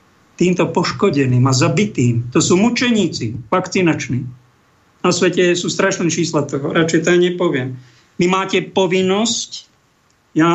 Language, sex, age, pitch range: Slovak, male, 50-69, 150-190 Hz